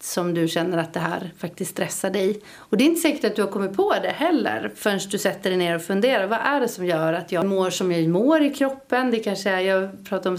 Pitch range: 180-225 Hz